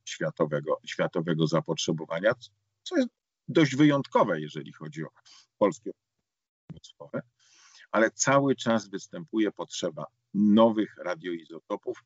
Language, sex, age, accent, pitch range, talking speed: Polish, male, 50-69, native, 100-120 Hz, 90 wpm